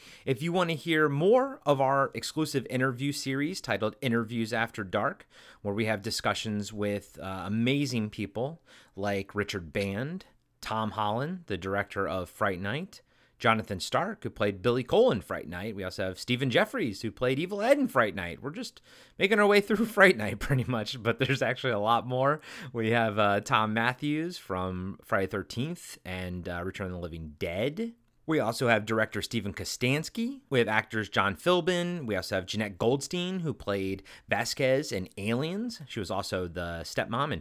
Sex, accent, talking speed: male, American, 180 wpm